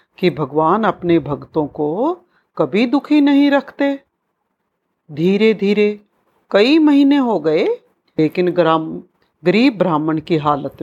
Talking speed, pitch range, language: 115 wpm, 180-290 Hz, Hindi